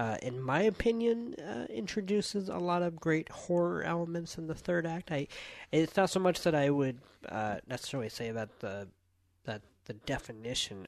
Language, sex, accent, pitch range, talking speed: English, male, American, 110-150 Hz, 175 wpm